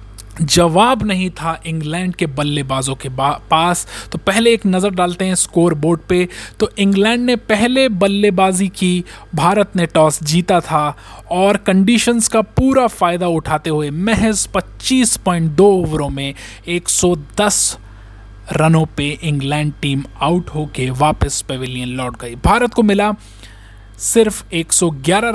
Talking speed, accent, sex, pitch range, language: 130 wpm, native, male, 150-200 Hz, Hindi